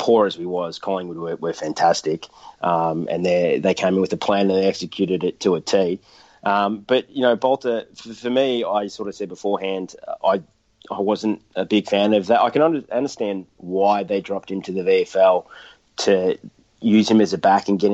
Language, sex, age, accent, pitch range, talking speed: English, male, 30-49, Australian, 95-105 Hz, 215 wpm